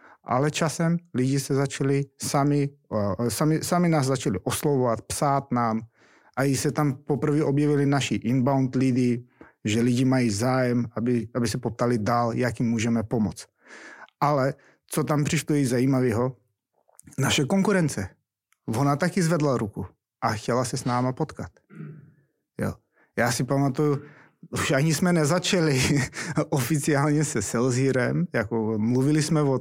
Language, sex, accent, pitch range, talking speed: Czech, male, native, 120-150 Hz, 140 wpm